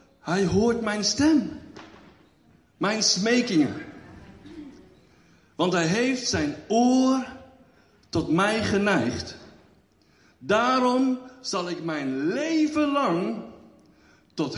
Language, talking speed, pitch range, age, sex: Dutch, 85 wpm, 155-250 Hz, 60-79, male